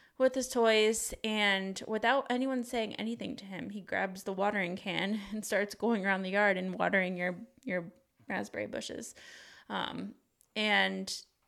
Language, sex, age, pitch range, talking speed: English, female, 20-39, 185-220 Hz, 150 wpm